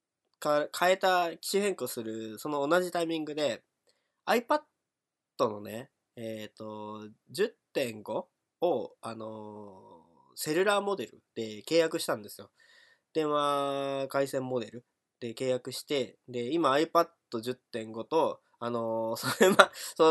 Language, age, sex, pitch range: Japanese, 20-39, male, 115-170 Hz